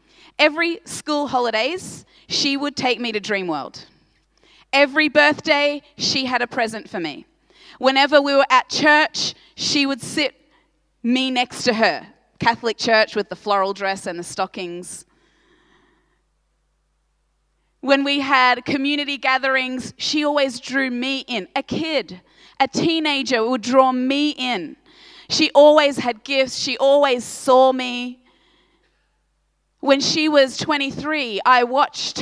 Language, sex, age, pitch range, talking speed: English, female, 30-49, 245-290 Hz, 130 wpm